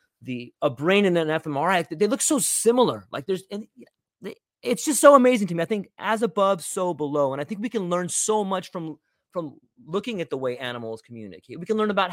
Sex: male